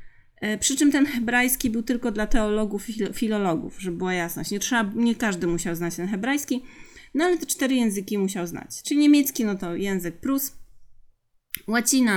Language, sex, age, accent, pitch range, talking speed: Polish, female, 30-49, native, 180-255 Hz, 175 wpm